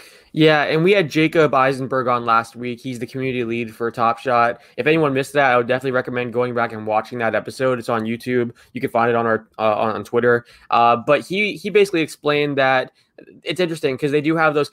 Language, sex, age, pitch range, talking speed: English, male, 20-39, 120-150 Hz, 230 wpm